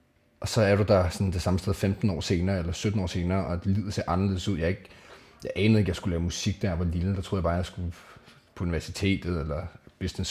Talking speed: 275 wpm